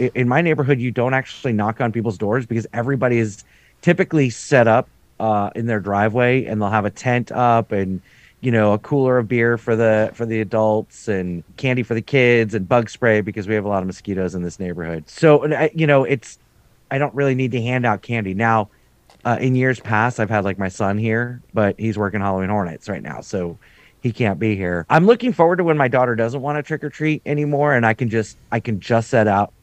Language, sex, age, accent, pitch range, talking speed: English, male, 30-49, American, 100-130 Hz, 230 wpm